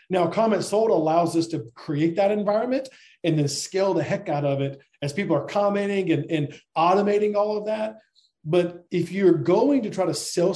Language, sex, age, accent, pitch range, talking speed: English, male, 40-59, American, 150-190 Hz, 200 wpm